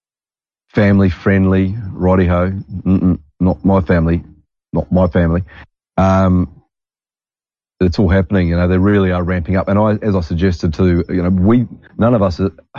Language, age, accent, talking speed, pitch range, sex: English, 40-59, Australian, 155 wpm, 85-100 Hz, male